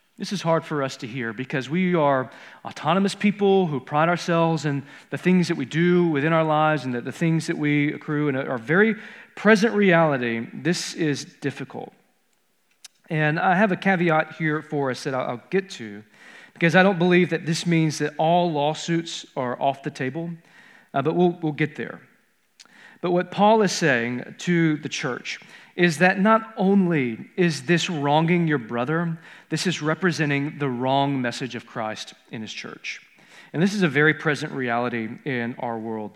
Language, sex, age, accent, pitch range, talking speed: English, male, 40-59, American, 135-175 Hz, 180 wpm